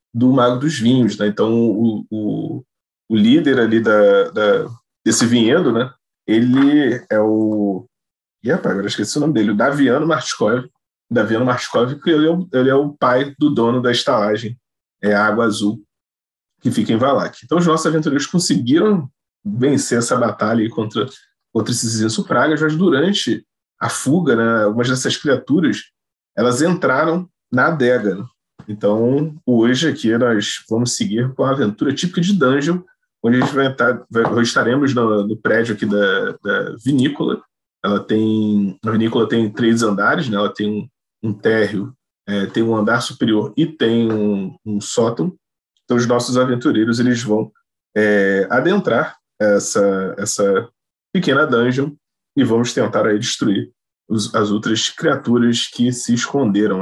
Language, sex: Portuguese, male